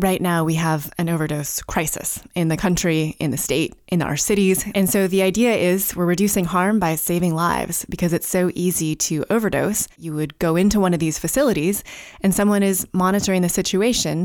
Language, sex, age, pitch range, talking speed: English, female, 20-39, 160-190 Hz, 200 wpm